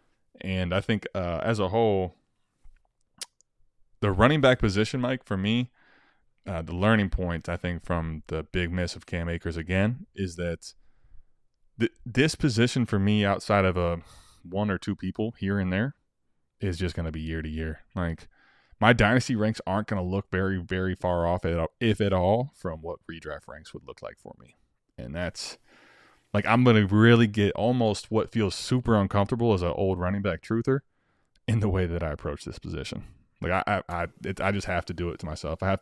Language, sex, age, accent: English, male, 20-39, American